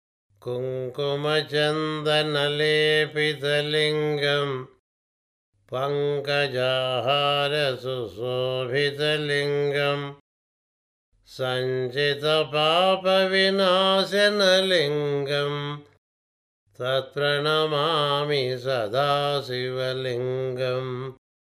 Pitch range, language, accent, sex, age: 130-150 Hz, Telugu, native, male, 60-79